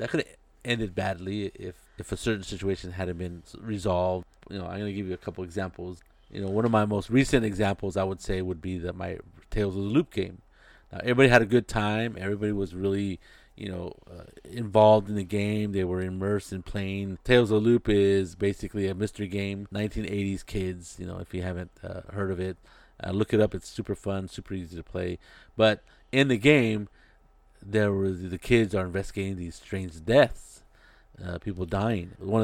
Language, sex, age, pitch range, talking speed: English, male, 30-49, 95-110 Hz, 205 wpm